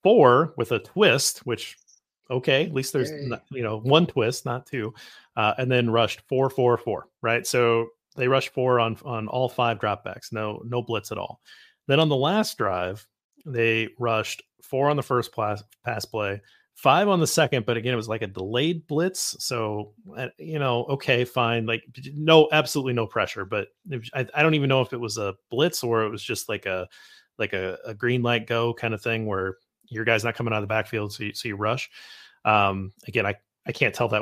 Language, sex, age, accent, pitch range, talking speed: English, male, 30-49, American, 110-135 Hz, 210 wpm